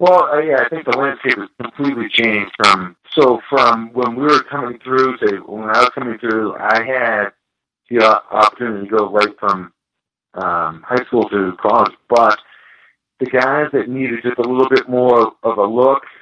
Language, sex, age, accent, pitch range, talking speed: English, male, 50-69, American, 100-125 Hz, 180 wpm